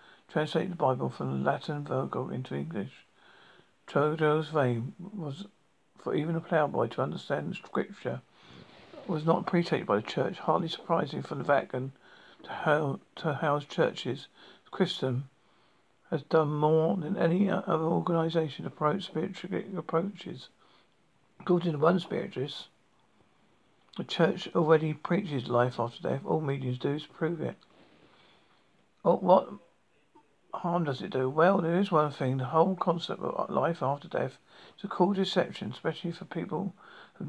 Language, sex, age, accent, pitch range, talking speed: English, male, 50-69, British, 140-175 Hz, 150 wpm